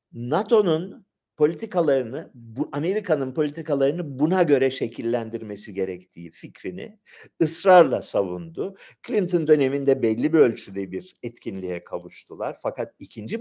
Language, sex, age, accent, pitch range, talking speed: Turkish, male, 50-69, native, 115-185 Hz, 95 wpm